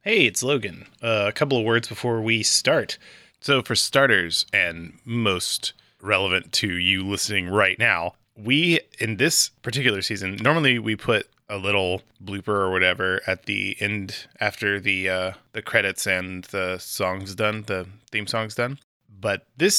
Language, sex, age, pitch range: English, male, 20-39, 100-120 Hz